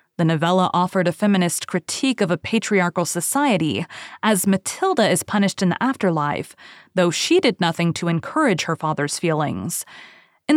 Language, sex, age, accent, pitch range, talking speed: English, female, 20-39, American, 175-230 Hz, 155 wpm